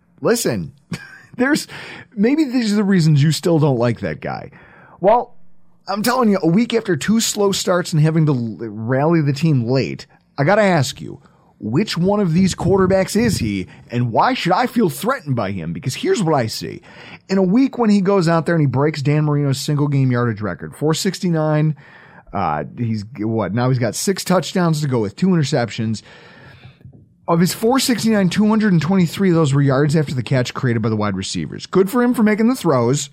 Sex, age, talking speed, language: male, 30-49, 205 wpm, English